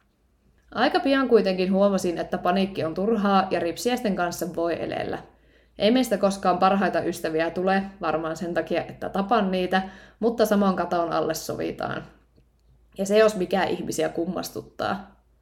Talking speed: 145 wpm